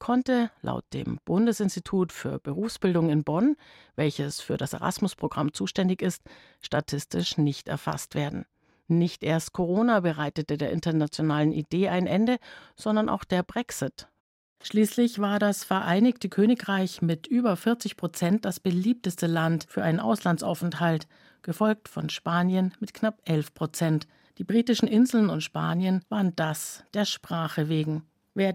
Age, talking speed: 50-69, 135 wpm